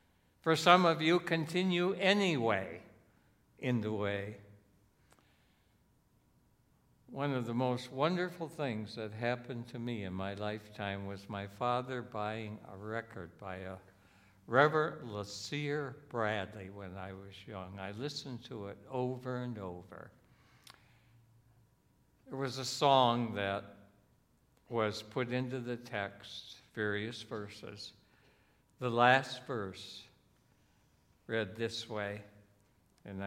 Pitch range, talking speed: 100-130 Hz, 115 wpm